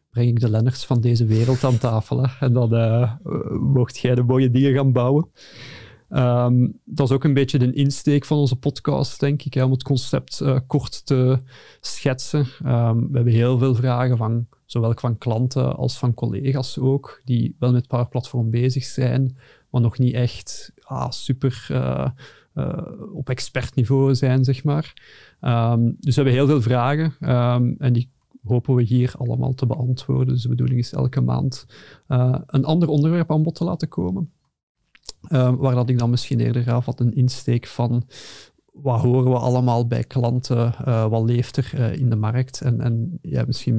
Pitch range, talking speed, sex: 120-135 Hz, 190 wpm, male